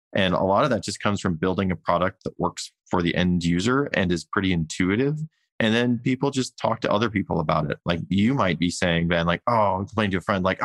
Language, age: English, 20-39